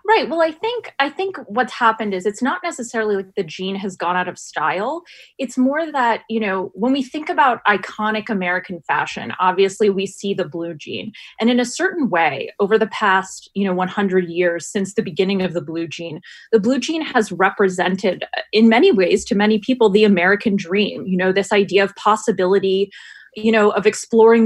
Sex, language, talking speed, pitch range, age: female, English, 200 wpm, 195-235 Hz, 20-39